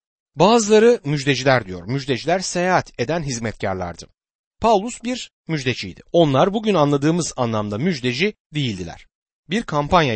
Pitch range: 125-195 Hz